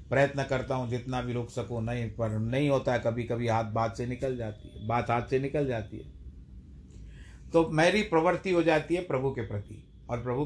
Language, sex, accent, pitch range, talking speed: Hindi, male, native, 105-140 Hz, 210 wpm